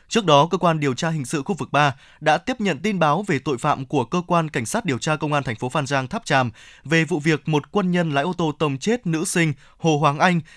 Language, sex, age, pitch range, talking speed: Vietnamese, male, 20-39, 145-185 Hz, 285 wpm